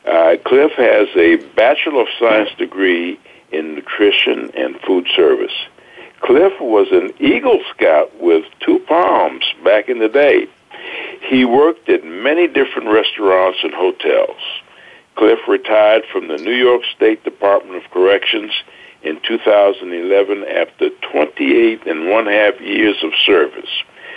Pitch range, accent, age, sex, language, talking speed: 330-420 Hz, American, 60-79, male, English, 130 wpm